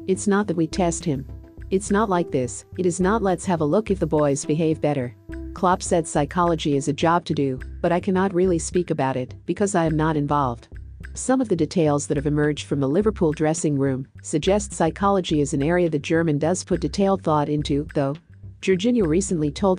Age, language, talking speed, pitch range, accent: 50-69, English, 210 wpm, 145-185 Hz, American